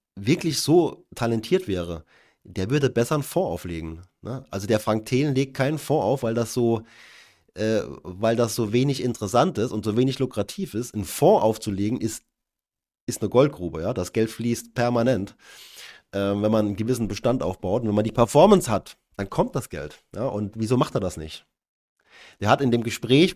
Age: 30-49